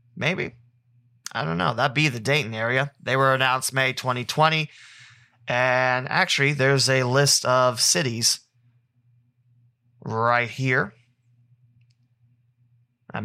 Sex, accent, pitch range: male, American, 120-140 Hz